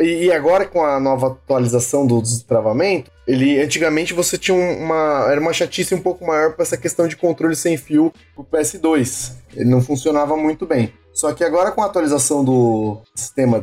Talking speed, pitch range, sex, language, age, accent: 185 wpm, 140-200 Hz, male, Portuguese, 20-39, Brazilian